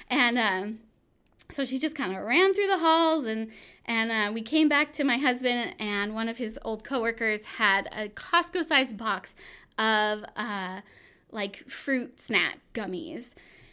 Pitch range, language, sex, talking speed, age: 220-285 Hz, English, female, 155 wpm, 20-39